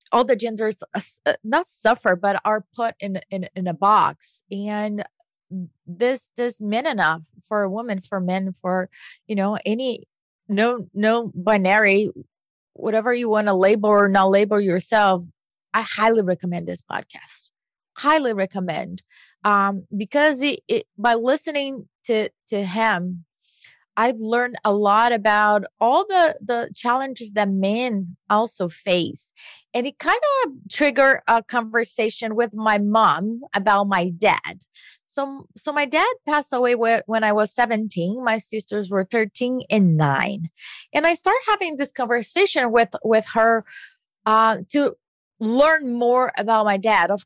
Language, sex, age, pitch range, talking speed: English, female, 30-49, 200-245 Hz, 145 wpm